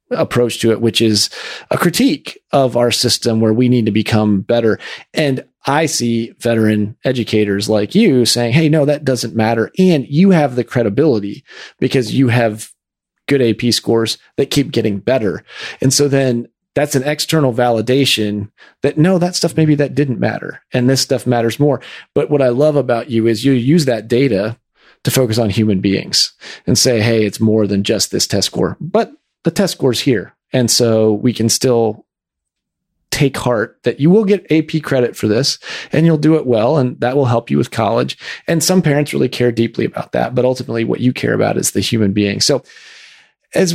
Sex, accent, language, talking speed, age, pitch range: male, American, English, 195 wpm, 40-59, 115-145 Hz